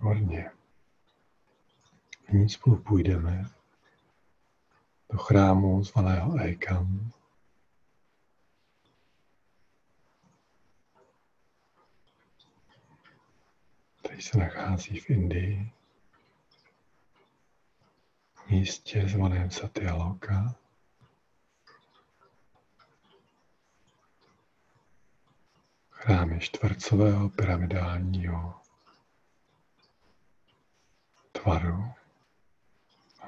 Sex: male